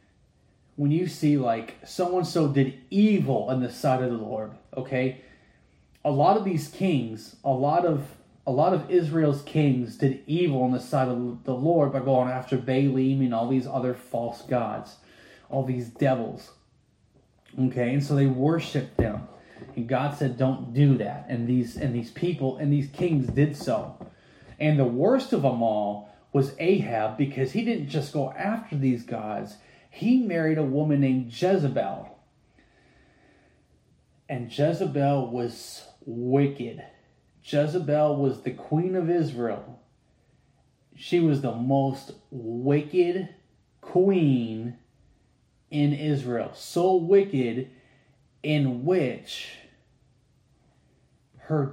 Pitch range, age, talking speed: 125-150 Hz, 30-49, 135 wpm